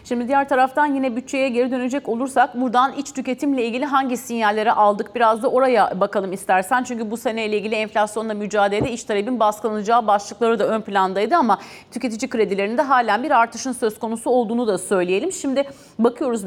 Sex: female